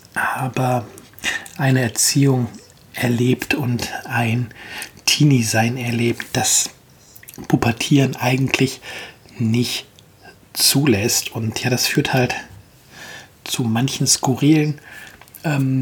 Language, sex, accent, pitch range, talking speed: German, male, German, 115-140 Hz, 85 wpm